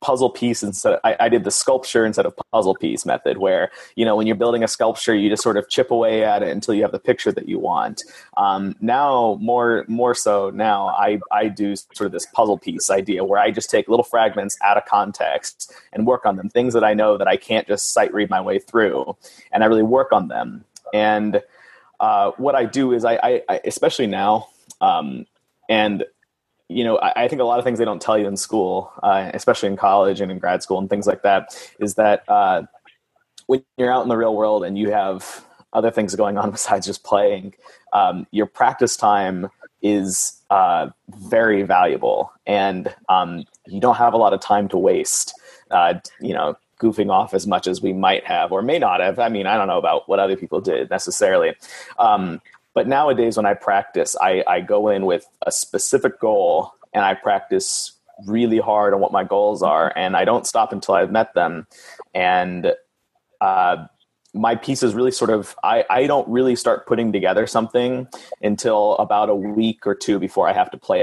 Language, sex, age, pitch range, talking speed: English, male, 30-49, 100-130 Hz, 210 wpm